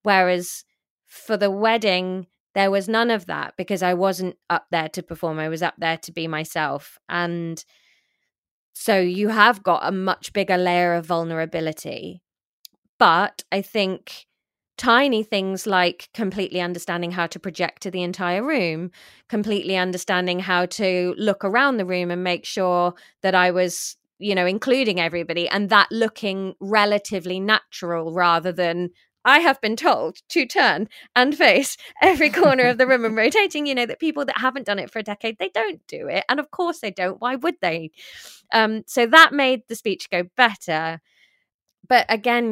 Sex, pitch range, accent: female, 175-225 Hz, British